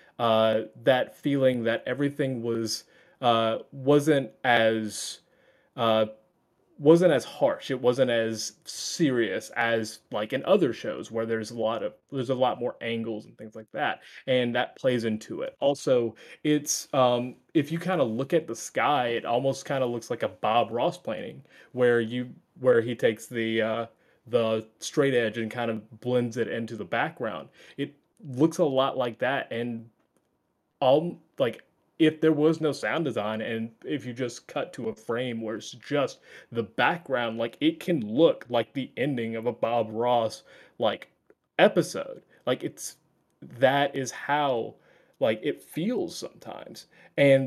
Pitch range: 115-140 Hz